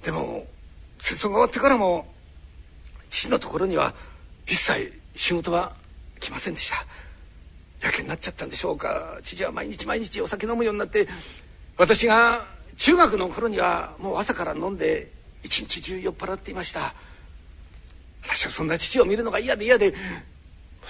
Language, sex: Japanese, male